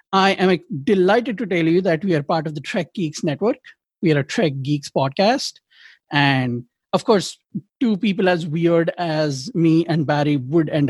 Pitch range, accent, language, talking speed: 155-195 Hz, Indian, English, 185 wpm